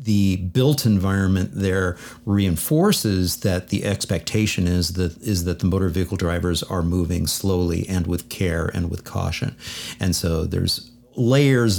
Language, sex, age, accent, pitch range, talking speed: English, male, 50-69, American, 90-115 Hz, 145 wpm